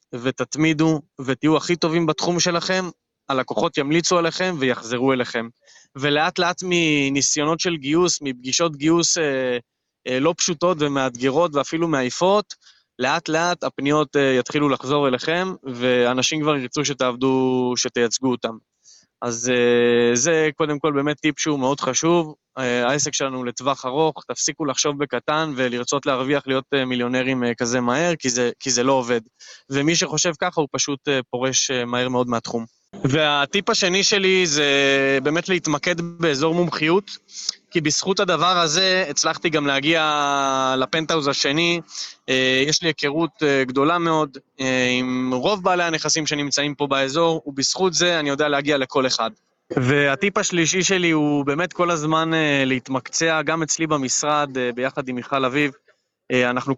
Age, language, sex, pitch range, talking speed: 20-39, Hebrew, male, 130-165 Hz, 135 wpm